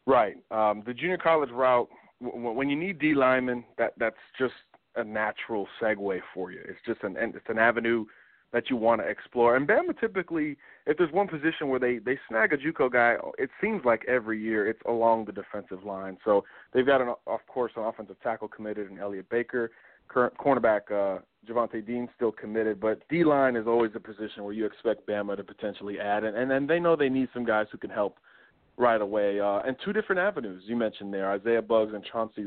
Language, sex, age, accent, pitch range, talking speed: English, male, 30-49, American, 110-145 Hz, 210 wpm